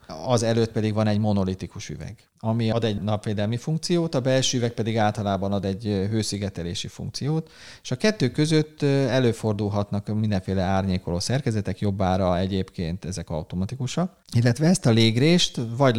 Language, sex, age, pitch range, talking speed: Hungarian, male, 30-49, 100-130 Hz, 145 wpm